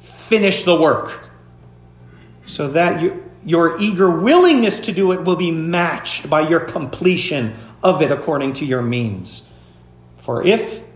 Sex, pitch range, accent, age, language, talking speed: male, 120-200 Hz, American, 40-59, English, 135 wpm